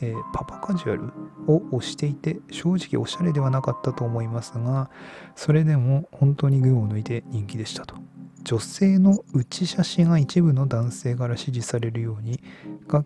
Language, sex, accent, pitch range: Japanese, male, native, 115-150 Hz